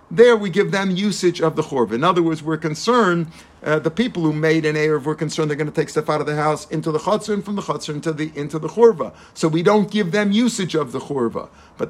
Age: 50-69